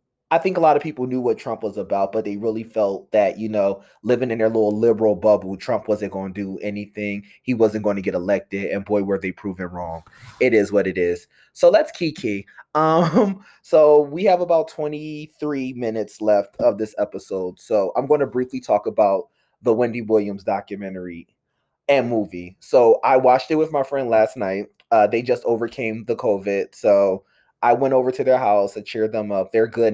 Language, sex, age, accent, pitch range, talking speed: English, male, 20-39, American, 105-155 Hz, 200 wpm